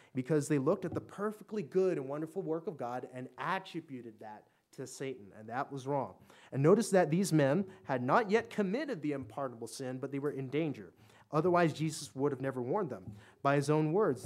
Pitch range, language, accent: 125-165 Hz, English, American